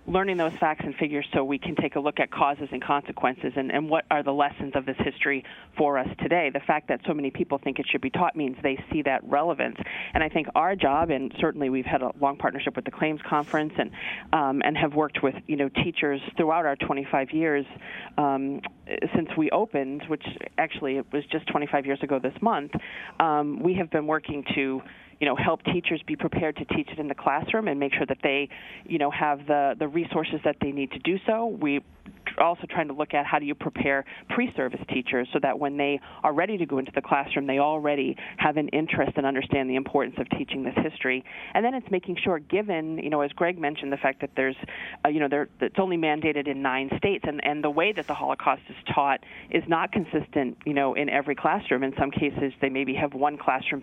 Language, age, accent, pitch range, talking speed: English, 30-49, American, 140-160 Hz, 230 wpm